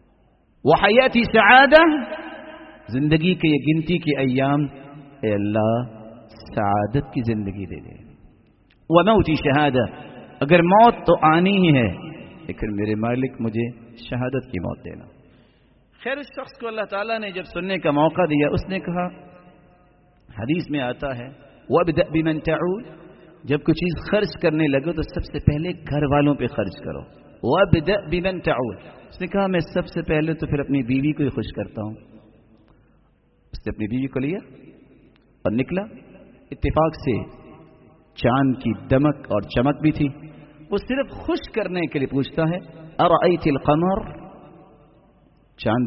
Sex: male